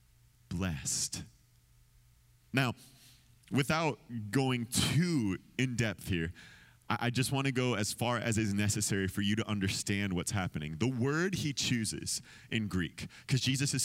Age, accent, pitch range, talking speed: 30-49, American, 110-145 Hz, 145 wpm